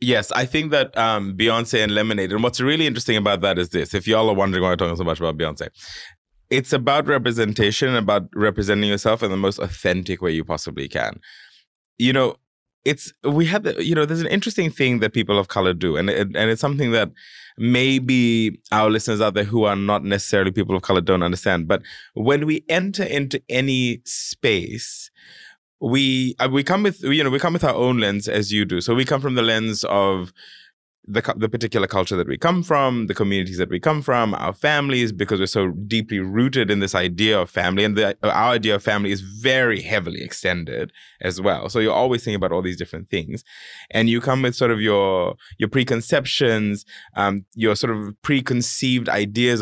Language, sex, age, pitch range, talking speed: English, male, 20-39, 100-130 Hz, 205 wpm